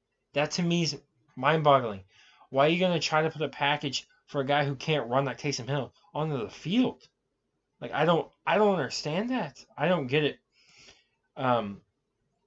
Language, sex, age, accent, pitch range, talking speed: English, male, 20-39, American, 120-150 Hz, 185 wpm